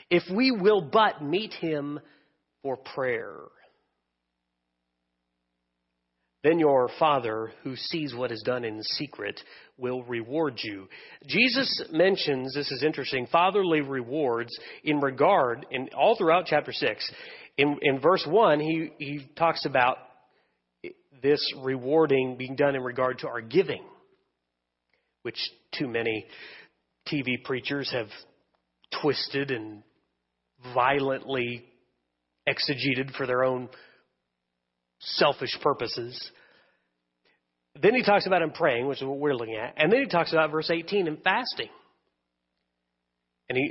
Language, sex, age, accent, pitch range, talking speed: English, male, 40-59, American, 110-160 Hz, 120 wpm